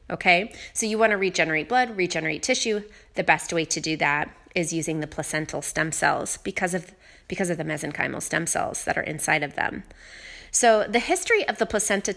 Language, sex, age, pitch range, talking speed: English, female, 30-49, 165-220 Hz, 195 wpm